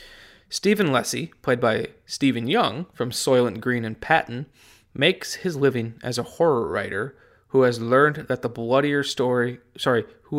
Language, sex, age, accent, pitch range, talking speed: English, male, 20-39, American, 115-130 Hz, 155 wpm